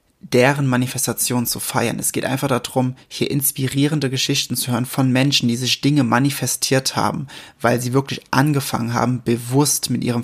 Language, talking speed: German, 165 wpm